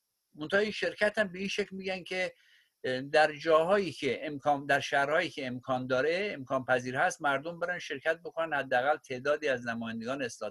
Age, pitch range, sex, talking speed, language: 50-69, 130-185 Hz, male, 170 wpm, Persian